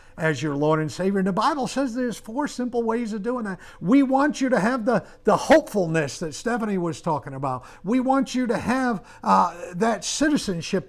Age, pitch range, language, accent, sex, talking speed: 50-69, 165-215 Hz, English, American, male, 205 wpm